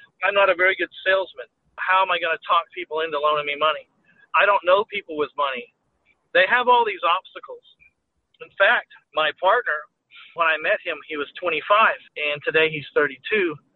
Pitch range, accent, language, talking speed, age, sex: 165-210 Hz, American, English, 190 wpm, 40-59, male